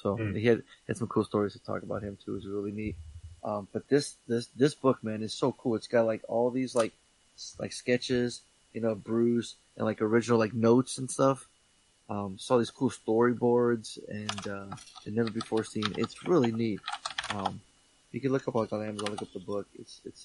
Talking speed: 215 wpm